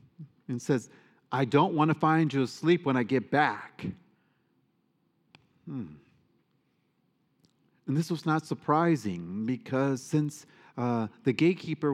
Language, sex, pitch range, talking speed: English, male, 125-155 Hz, 120 wpm